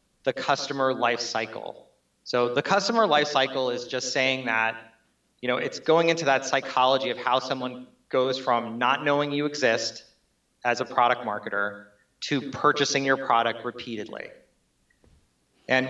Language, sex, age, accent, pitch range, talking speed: English, male, 30-49, American, 120-145 Hz, 145 wpm